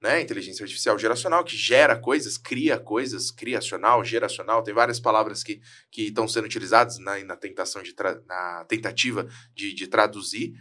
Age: 20-39